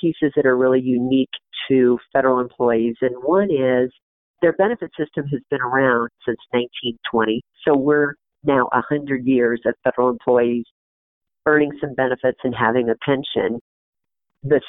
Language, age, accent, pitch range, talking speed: English, 50-69, American, 125-155 Hz, 145 wpm